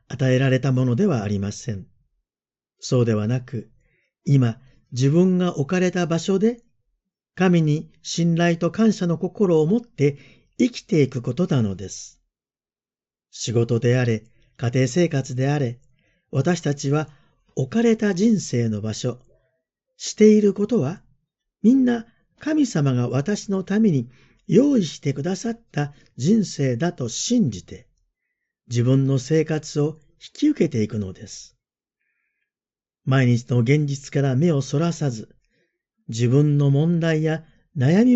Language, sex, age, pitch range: Japanese, male, 50-69, 125-185 Hz